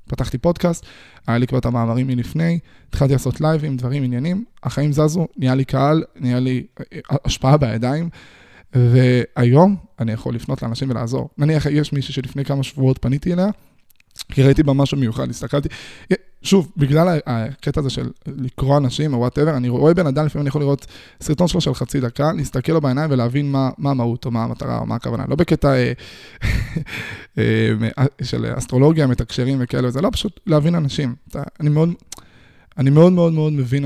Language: Hebrew